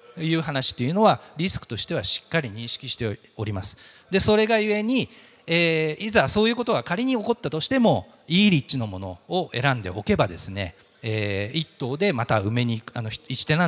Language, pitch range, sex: Japanese, 120-195 Hz, male